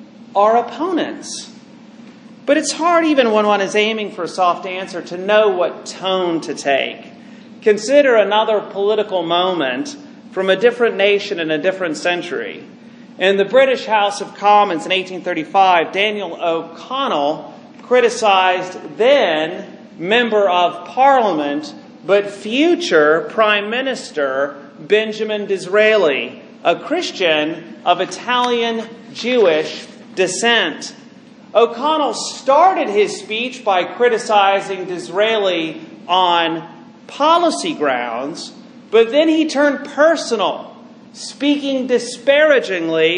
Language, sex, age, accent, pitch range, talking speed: English, male, 40-59, American, 180-245 Hz, 105 wpm